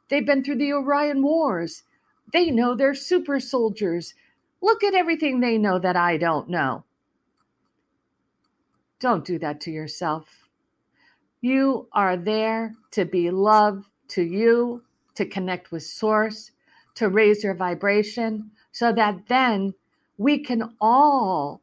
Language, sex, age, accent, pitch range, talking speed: English, female, 50-69, American, 205-280 Hz, 130 wpm